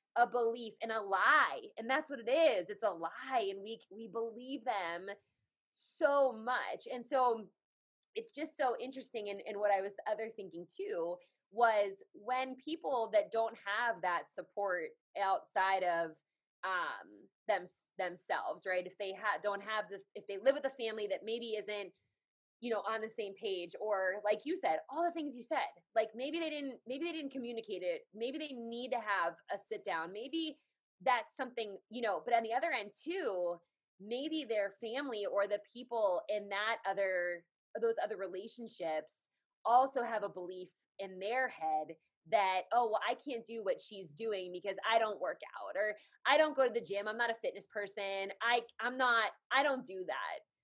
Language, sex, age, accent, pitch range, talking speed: English, female, 20-39, American, 200-260 Hz, 185 wpm